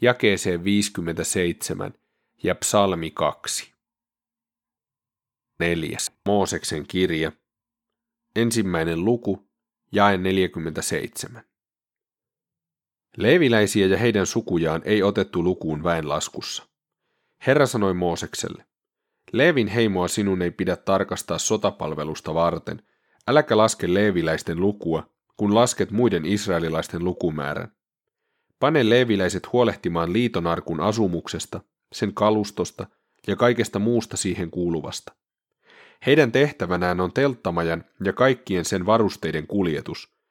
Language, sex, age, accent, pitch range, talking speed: Finnish, male, 30-49, native, 85-115 Hz, 90 wpm